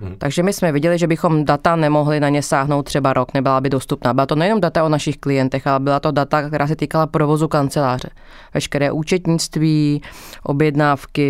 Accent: native